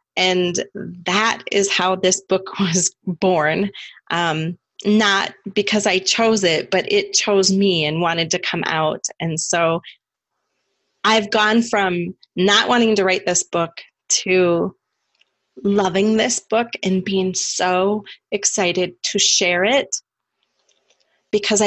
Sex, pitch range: female, 175-205 Hz